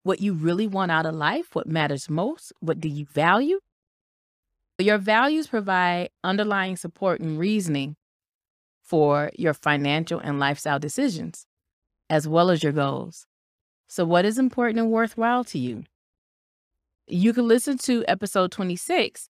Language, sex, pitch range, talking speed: English, female, 150-210 Hz, 140 wpm